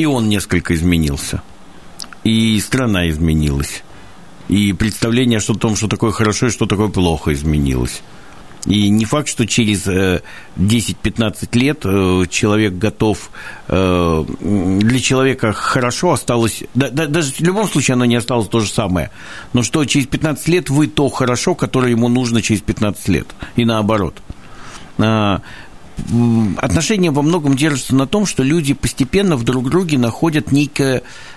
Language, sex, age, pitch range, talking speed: Russian, male, 50-69, 110-150 Hz, 140 wpm